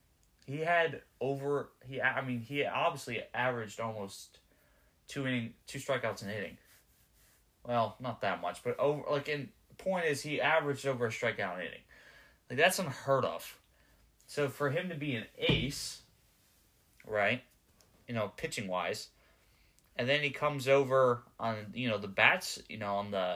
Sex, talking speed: male, 160 wpm